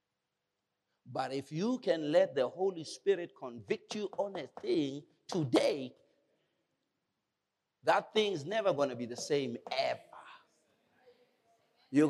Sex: male